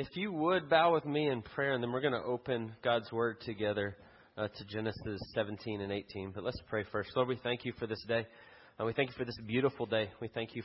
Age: 30-49